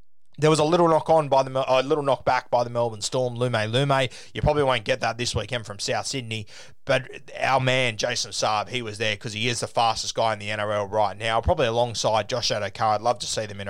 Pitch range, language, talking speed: 110-130 Hz, English, 250 wpm